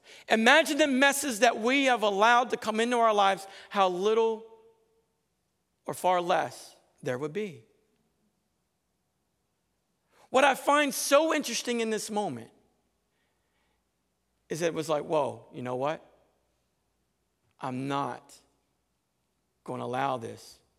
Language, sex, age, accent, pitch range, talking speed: English, male, 50-69, American, 140-230 Hz, 125 wpm